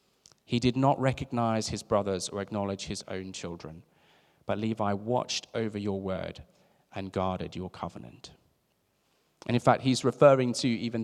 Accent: British